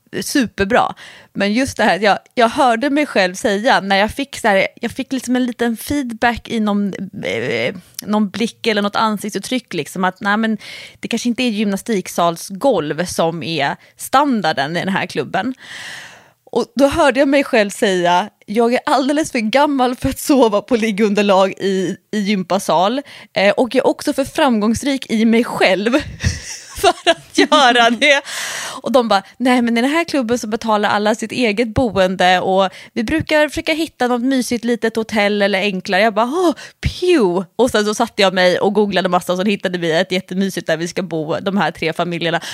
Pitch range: 185-255 Hz